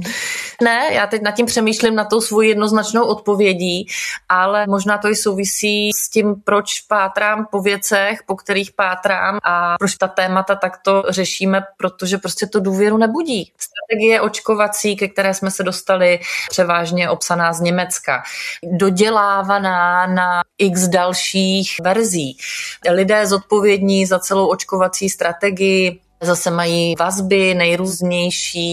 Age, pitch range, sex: 20-39, 175-200 Hz, female